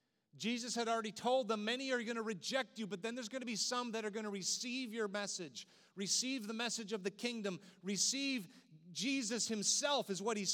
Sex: male